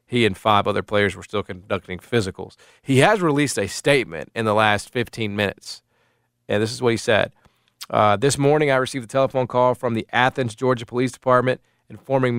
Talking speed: 195 wpm